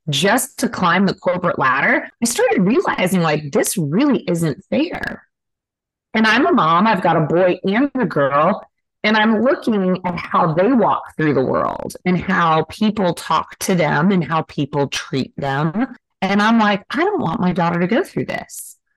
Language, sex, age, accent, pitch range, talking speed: English, female, 30-49, American, 160-215 Hz, 185 wpm